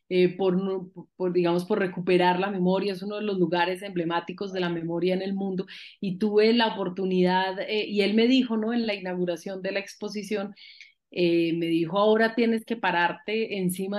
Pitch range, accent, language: 180-210 Hz, Colombian, Spanish